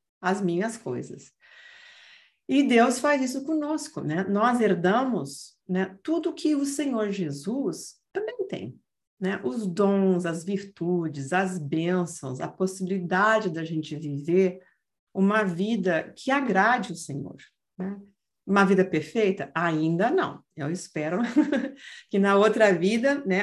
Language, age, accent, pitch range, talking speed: Portuguese, 50-69, Brazilian, 175-230 Hz, 130 wpm